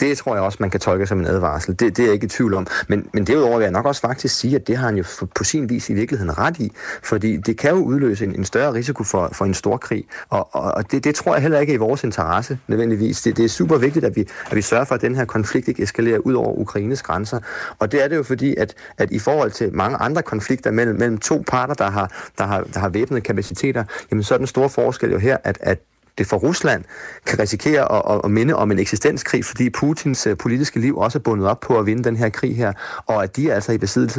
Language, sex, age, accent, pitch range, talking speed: Danish, male, 30-49, native, 105-140 Hz, 275 wpm